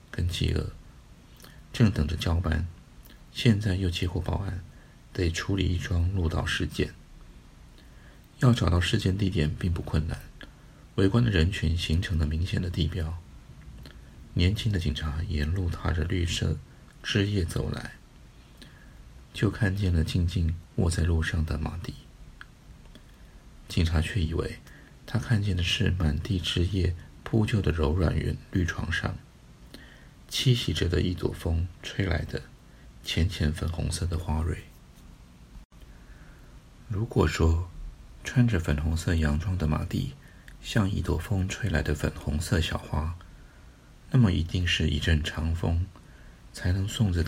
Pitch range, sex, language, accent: 80-95 Hz, male, Chinese, native